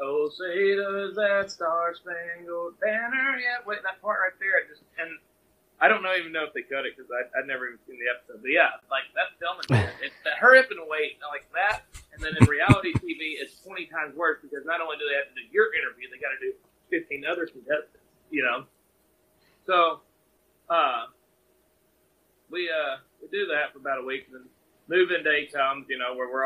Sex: male